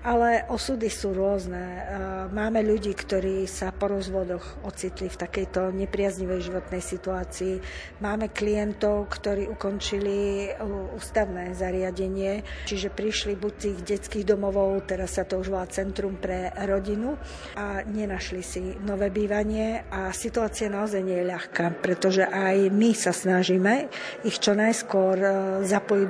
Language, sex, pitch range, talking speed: Slovak, female, 190-215 Hz, 130 wpm